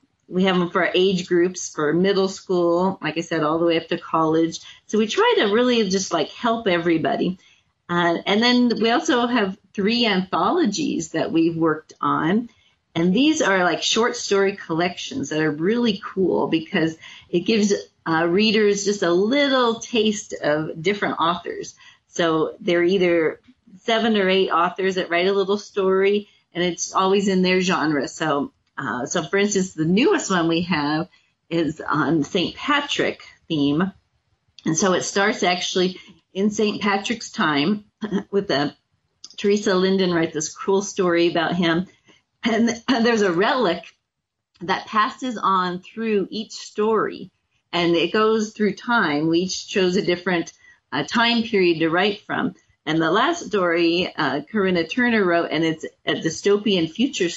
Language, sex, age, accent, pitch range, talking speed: English, female, 40-59, American, 170-215 Hz, 160 wpm